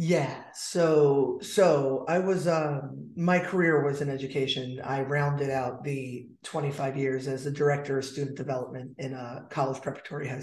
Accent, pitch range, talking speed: American, 145-185 Hz, 160 wpm